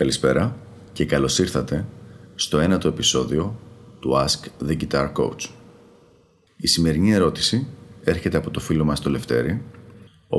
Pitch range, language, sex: 80-110 Hz, Greek, male